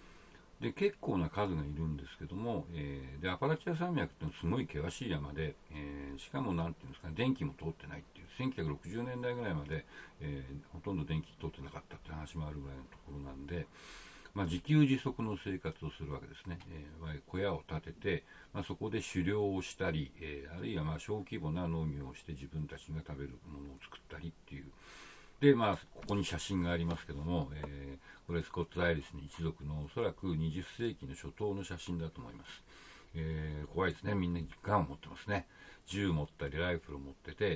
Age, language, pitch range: 60-79, Japanese, 75-100 Hz